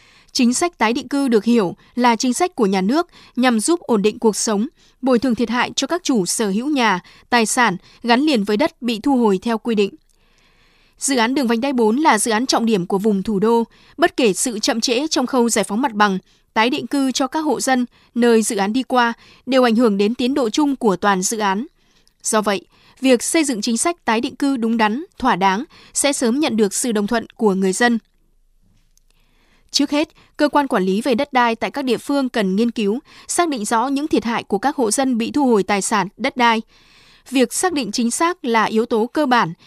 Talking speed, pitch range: 235 wpm, 215-270 Hz